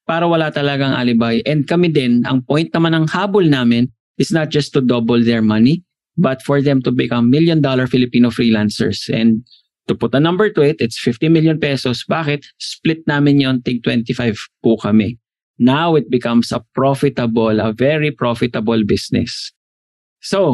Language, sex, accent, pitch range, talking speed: Filipino, male, native, 120-160 Hz, 170 wpm